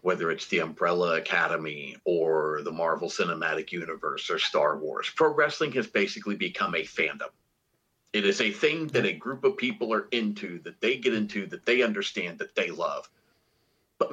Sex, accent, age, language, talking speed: male, American, 40-59, English, 180 wpm